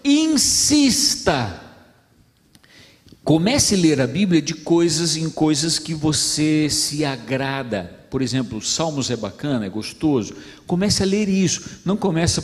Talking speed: 135 wpm